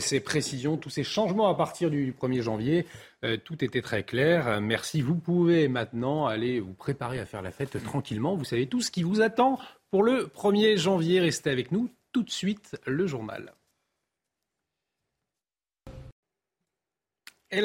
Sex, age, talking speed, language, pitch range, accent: male, 40-59, 160 wpm, French, 125-175 Hz, French